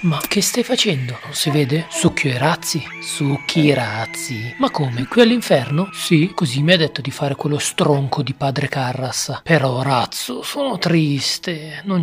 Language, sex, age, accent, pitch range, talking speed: Italian, male, 40-59, native, 135-165 Hz, 170 wpm